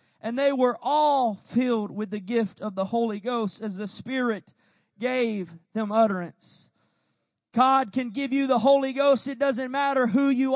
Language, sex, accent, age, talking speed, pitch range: English, male, American, 40-59, 170 wpm, 235-290 Hz